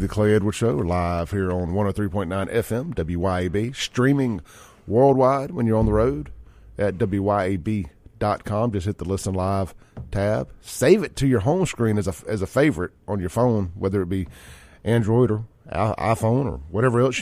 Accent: American